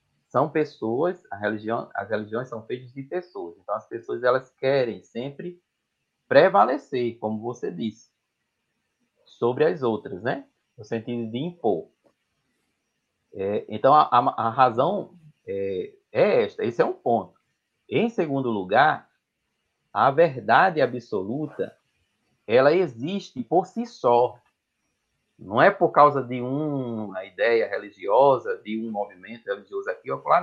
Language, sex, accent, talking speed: Portuguese, male, Brazilian, 135 wpm